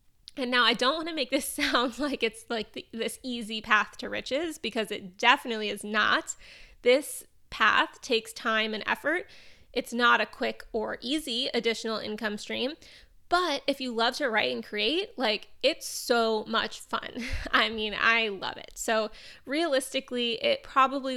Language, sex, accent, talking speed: English, female, American, 165 wpm